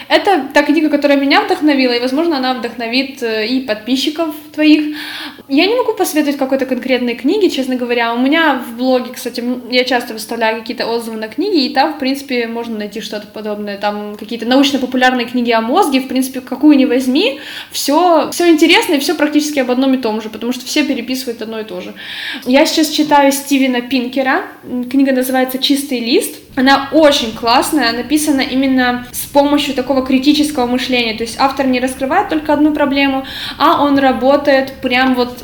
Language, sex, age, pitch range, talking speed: Russian, female, 20-39, 235-285 Hz, 175 wpm